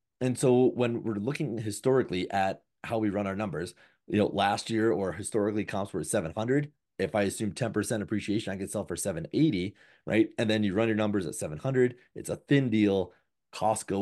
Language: English